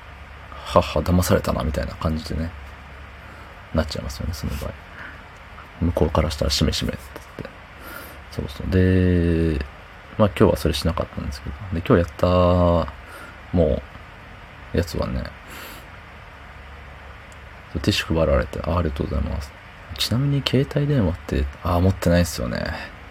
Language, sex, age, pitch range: Japanese, male, 30-49, 80-95 Hz